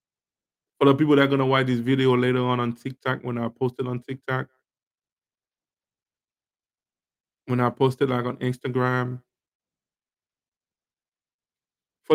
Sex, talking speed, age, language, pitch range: male, 140 wpm, 20-39, English, 125-135 Hz